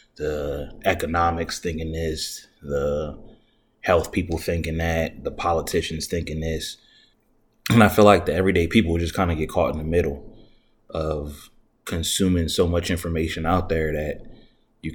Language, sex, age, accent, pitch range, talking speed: English, male, 20-39, American, 75-90 Hz, 150 wpm